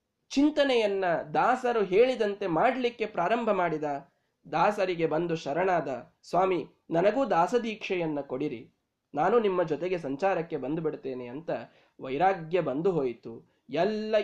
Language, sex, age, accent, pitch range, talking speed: Kannada, male, 20-39, native, 155-215 Hz, 100 wpm